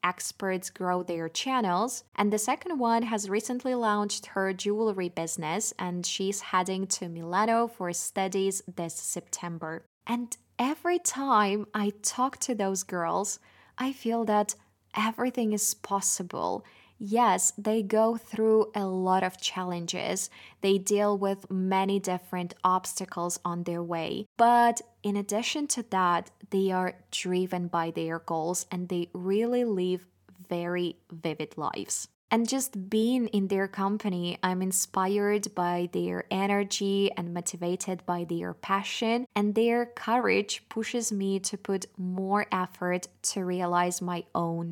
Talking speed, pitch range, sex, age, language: 135 wpm, 180-220 Hz, female, 20-39, Russian